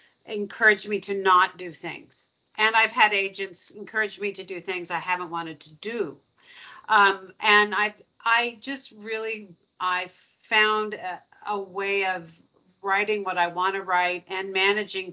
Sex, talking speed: female, 160 wpm